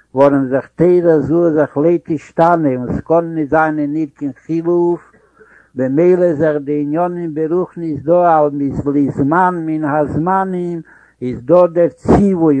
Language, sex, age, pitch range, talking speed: Hebrew, male, 60-79, 150-180 Hz, 110 wpm